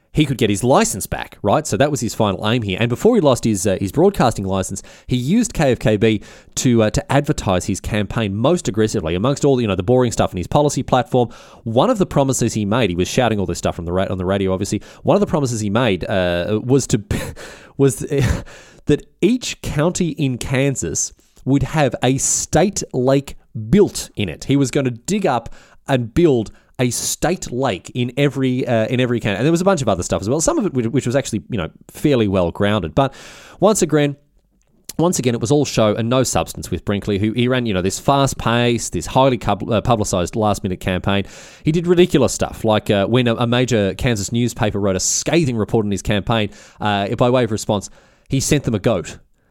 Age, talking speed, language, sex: 20-39, 215 wpm, English, male